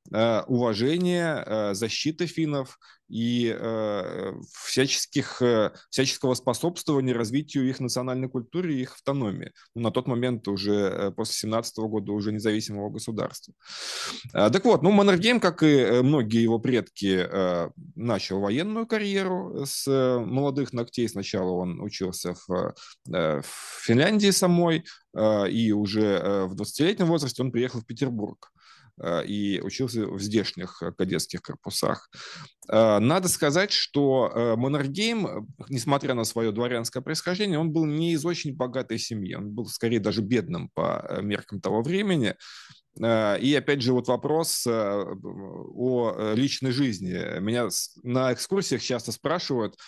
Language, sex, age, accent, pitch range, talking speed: Russian, male, 20-39, native, 110-140 Hz, 120 wpm